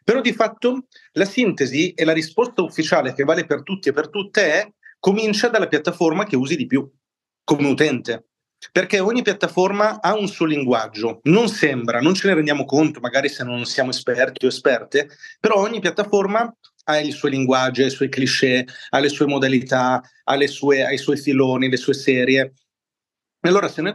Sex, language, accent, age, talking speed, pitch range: male, Italian, native, 40-59, 190 wpm, 135-180 Hz